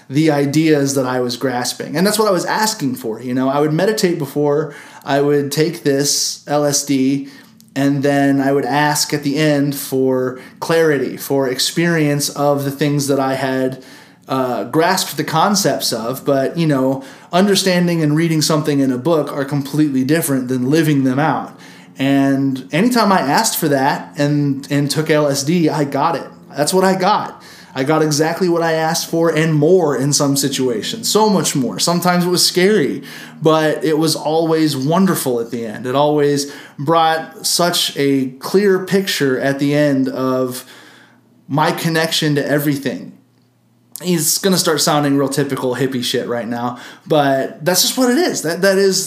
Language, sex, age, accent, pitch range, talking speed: English, male, 30-49, American, 135-165 Hz, 170 wpm